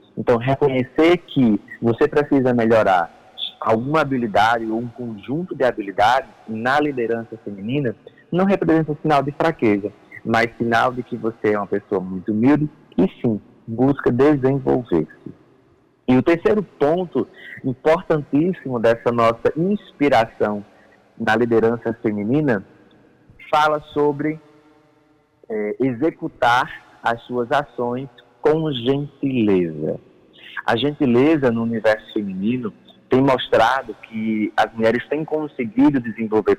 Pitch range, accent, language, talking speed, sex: 115-145 Hz, Brazilian, Portuguese, 110 wpm, male